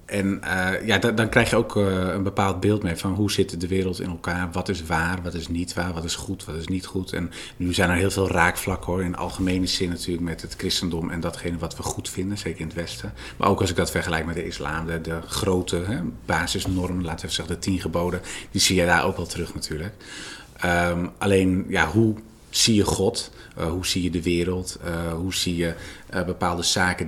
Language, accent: Dutch, Dutch